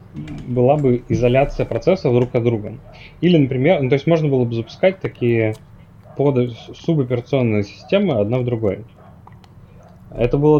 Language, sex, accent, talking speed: Russian, male, native, 140 wpm